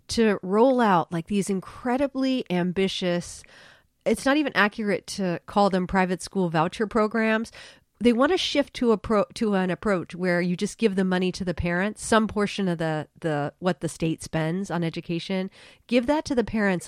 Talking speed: 190 wpm